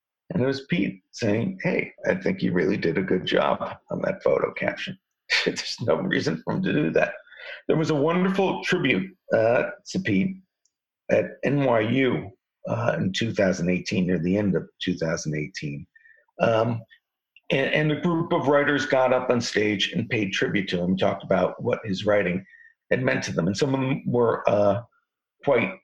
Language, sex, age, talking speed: English, male, 50-69, 175 wpm